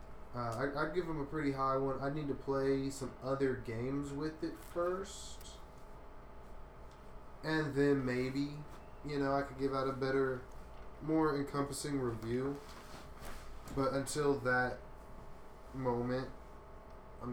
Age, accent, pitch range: 20-39, American, 120-140 Hz